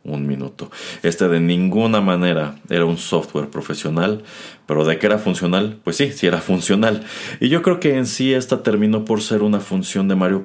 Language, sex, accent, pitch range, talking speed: Spanish, male, Mexican, 85-110 Hz, 195 wpm